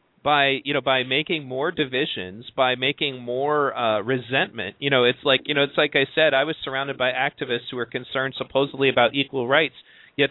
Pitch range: 125-145 Hz